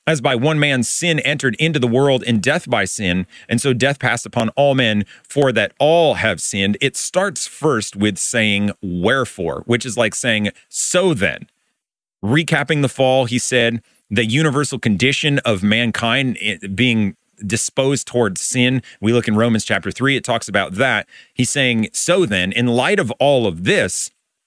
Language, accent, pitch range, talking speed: English, American, 110-135 Hz, 175 wpm